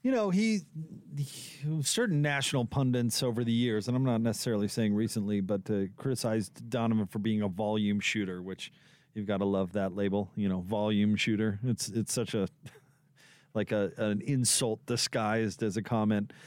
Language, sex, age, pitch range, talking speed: English, male, 40-59, 110-145 Hz, 170 wpm